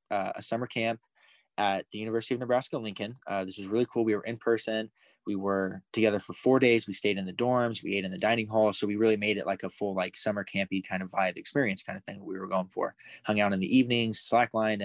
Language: English